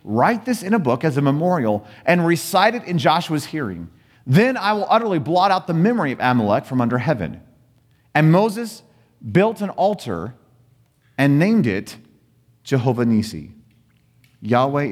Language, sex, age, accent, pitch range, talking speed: English, male, 40-59, American, 125-195 Hz, 155 wpm